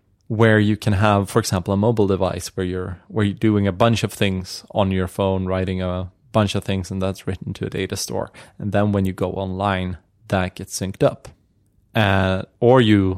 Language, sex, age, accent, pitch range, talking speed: English, male, 30-49, Norwegian, 95-110 Hz, 210 wpm